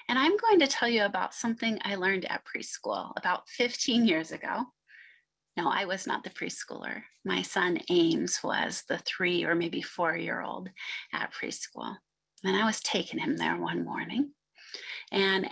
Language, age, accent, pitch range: English, 30-49, American, 180-255 Hz